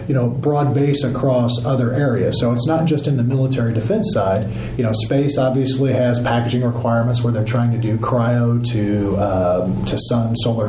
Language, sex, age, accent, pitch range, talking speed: English, male, 40-59, American, 115-140 Hz, 190 wpm